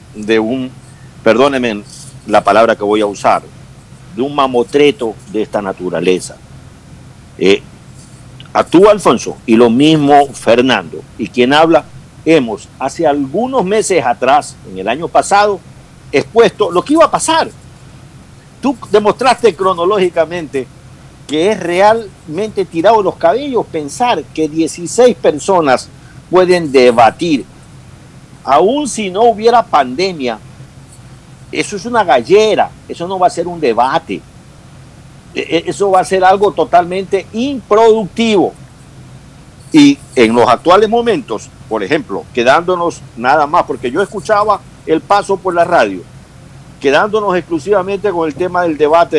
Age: 50-69